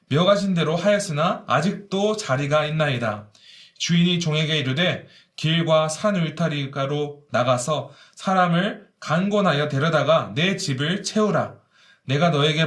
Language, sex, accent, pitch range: Korean, male, native, 145-200 Hz